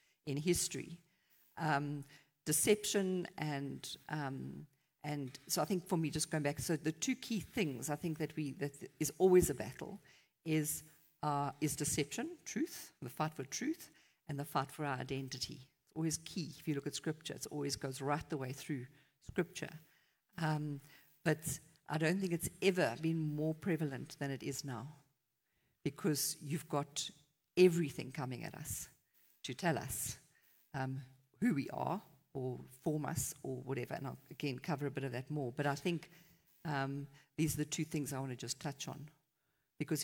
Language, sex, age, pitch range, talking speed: English, female, 50-69, 135-160 Hz, 175 wpm